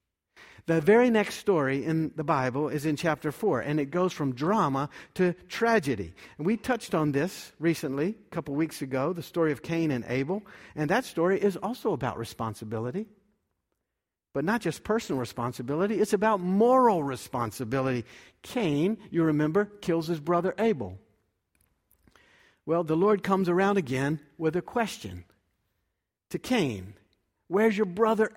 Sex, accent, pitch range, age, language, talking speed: male, American, 120-185 Hz, 50-69, English, 150 wpm